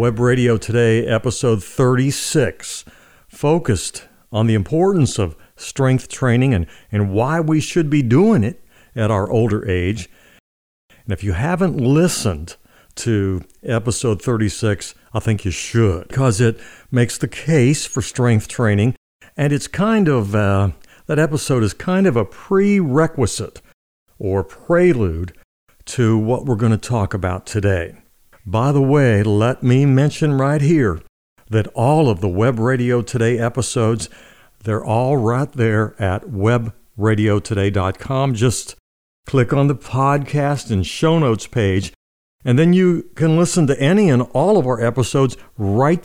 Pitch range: 100-135 Hz